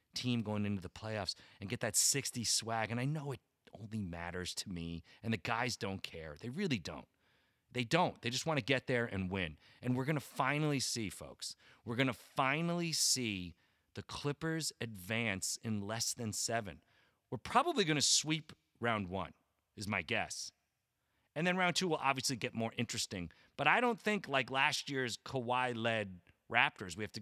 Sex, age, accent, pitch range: male, 30-49, American, 100-140 Hz